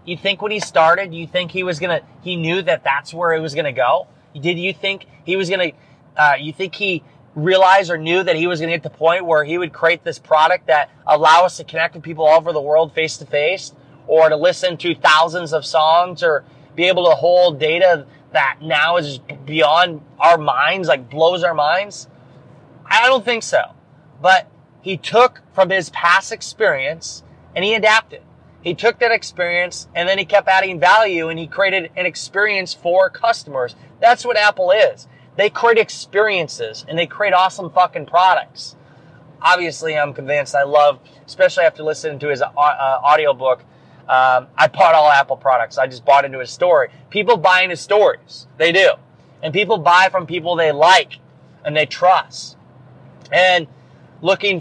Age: 20-39